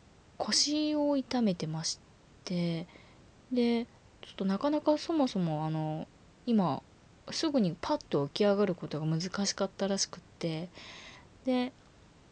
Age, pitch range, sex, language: 20-39, 170-225 Hz, female, Japanese